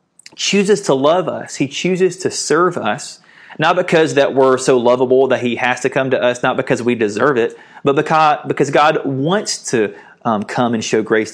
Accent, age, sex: American, 30-49, male